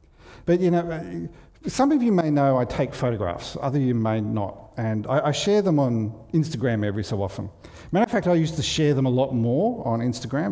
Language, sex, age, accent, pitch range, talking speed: English, male, 50-69, Australian, 125-170 Hz, 215 wpm